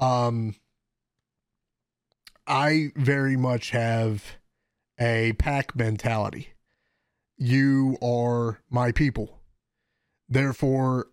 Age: 30-49